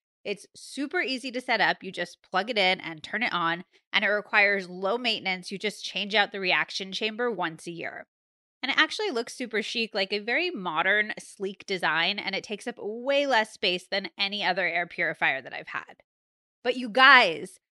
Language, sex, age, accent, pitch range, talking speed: English, female, 20-39, American, 190-250 Hz, 205 wpm